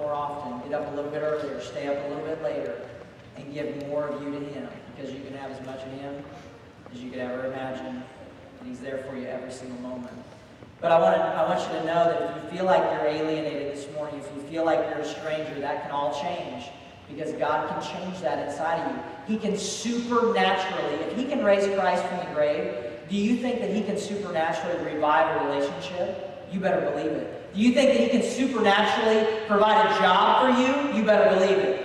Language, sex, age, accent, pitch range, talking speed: English, male, 40-59, American, 150-230 Hz, 225 wpm